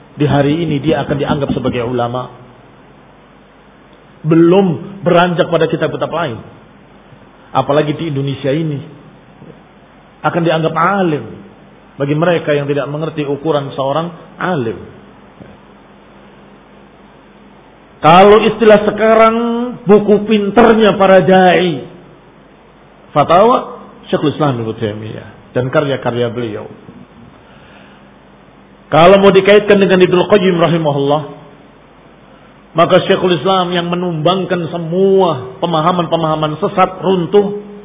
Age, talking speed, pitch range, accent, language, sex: 40-59, 90 wpm, 135-175 Hz, native, Indonesian, male